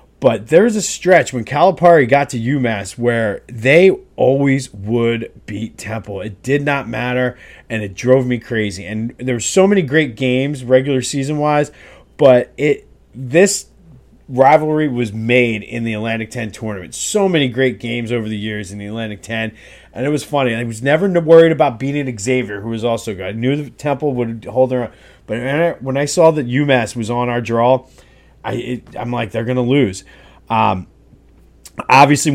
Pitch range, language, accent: 110-140 Hz, English, American